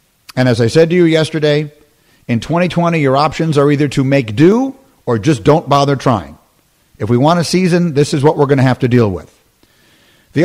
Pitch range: 125-170 Hz